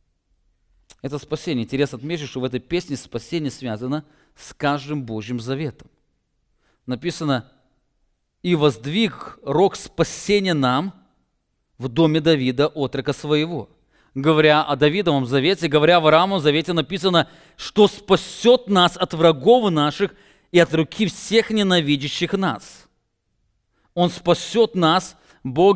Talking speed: 115 wpm